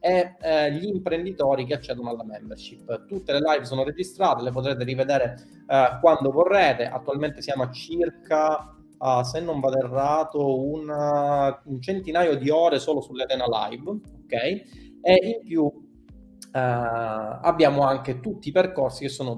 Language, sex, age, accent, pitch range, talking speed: Italian, male, 30-49, native, 135-180 Hz, 150 wpm